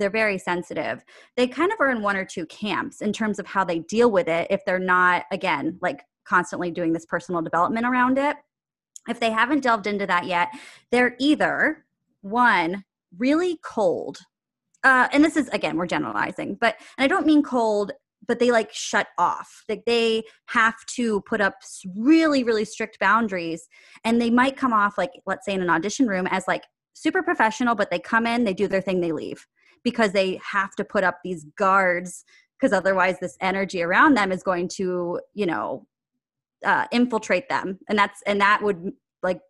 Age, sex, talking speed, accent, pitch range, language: 20-39, female, 190 wpm, American, 185-240 Hz, English